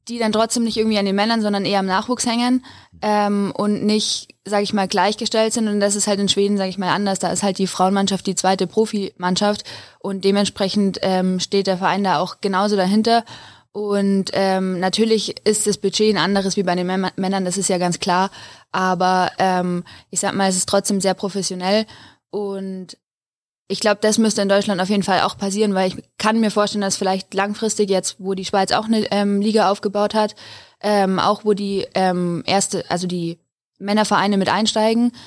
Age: 20-39